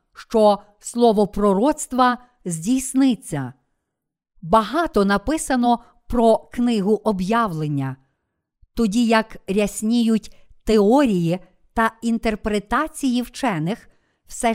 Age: 50-69